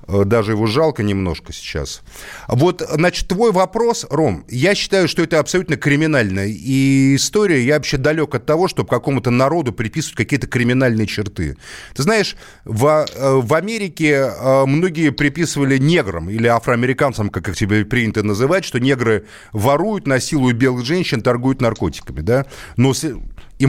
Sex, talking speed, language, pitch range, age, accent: male, 140 wpm, Russian, 115-150 Hz, 30-49, native